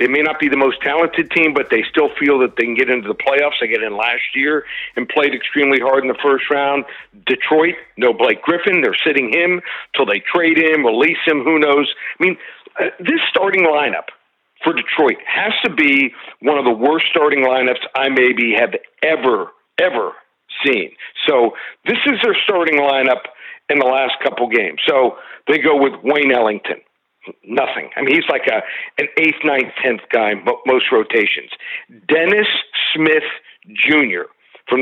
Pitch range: 135-180 Hz